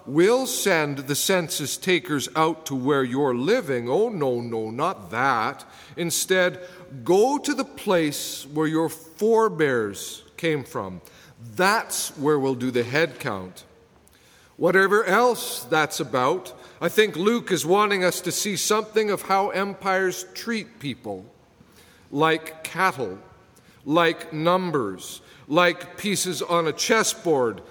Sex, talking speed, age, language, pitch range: male, 130 wpm, 50-69, English, 150-190 Hz